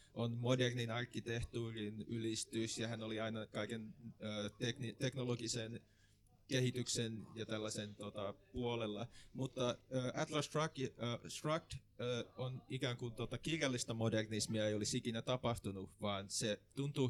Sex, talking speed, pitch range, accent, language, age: male, 115 wpm, 105-120 Hz, native, Finnish, 20-39